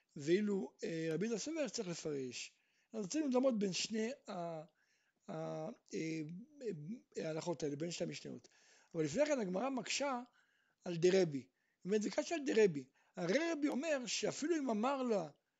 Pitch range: 185-270 Hz